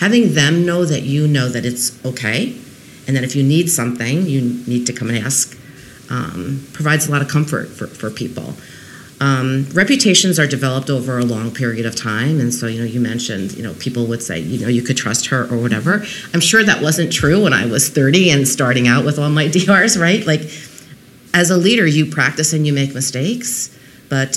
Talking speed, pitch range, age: 215 wpm, 125-155 Hz, 40-59